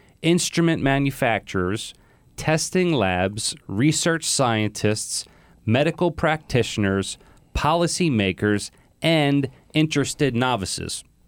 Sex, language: male, English